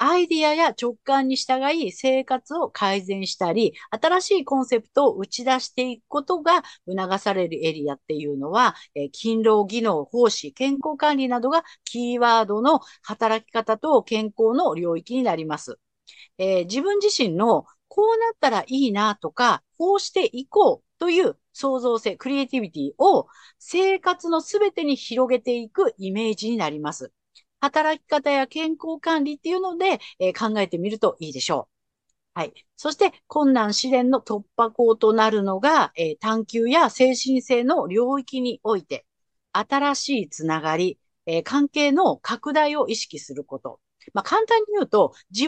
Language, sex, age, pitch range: Japanese, female, 50-69, 215-320 Hz